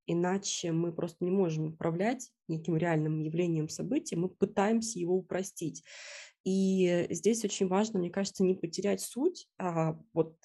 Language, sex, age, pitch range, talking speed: Russian, female, 20-39, 160-190 Hz, 145 wpm